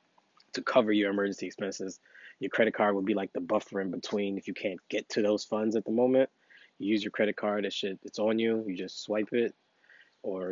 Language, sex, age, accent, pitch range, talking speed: English, male, 20-39, American, 100-115 Hz, 225 wpm